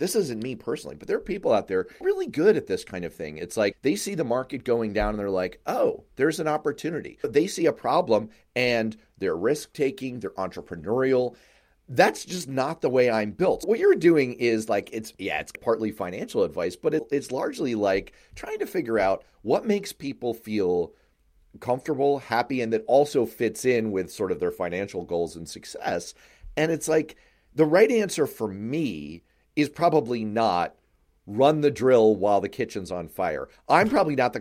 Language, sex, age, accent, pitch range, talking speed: English, male, 30-49, American, 110-160 Hz, 190 wpm